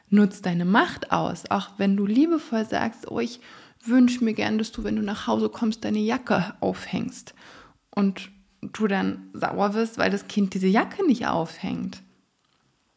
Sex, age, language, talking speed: female, 20-39, German, 165 wpm